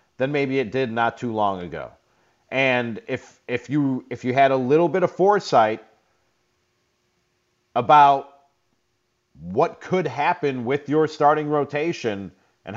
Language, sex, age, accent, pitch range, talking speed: English, male, 30-49, American, 120-155 Hz, 135 wpm